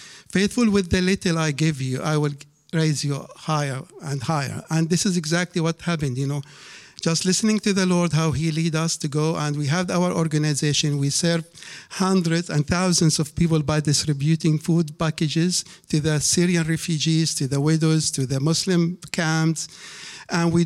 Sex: male